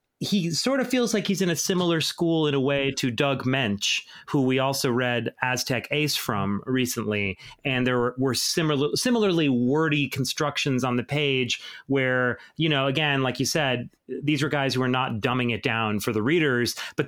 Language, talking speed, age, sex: English, 195 wpm, 30-49, male